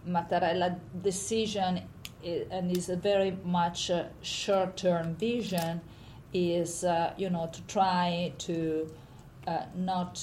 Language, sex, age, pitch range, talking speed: English, female, 40-59, 165-190 Hz, 105 wpm